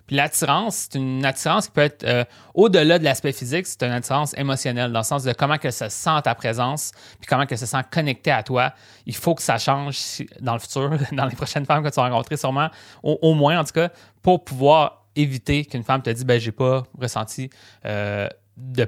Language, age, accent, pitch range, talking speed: French, 30-49, Canadian, 115-150 Hz, 225 wpm